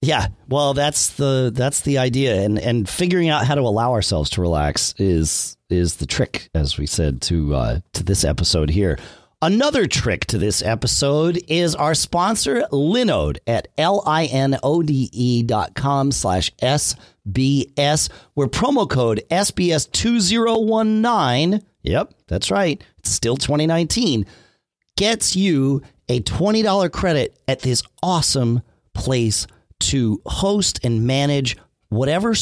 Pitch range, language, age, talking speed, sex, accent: 110-165 Hz, English, 40-59, 150 wpm, male, American